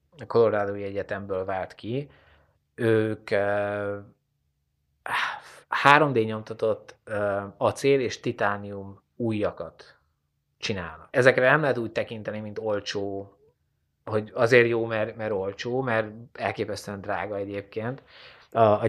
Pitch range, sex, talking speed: 100-120 Hz, male, 100 wpm